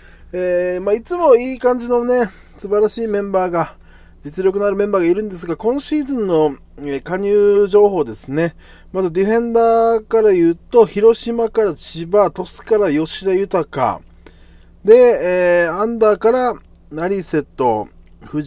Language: Japanese